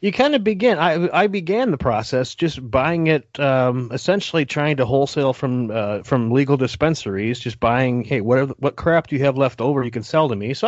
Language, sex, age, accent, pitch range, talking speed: English, male, 30-49, American, 115-150 Hz, 225 wpm